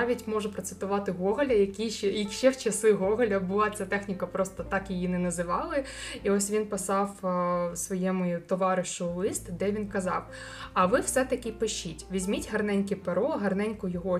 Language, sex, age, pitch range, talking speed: Ukrainian, female, 20-39, 190-220 Hz, 155 wpm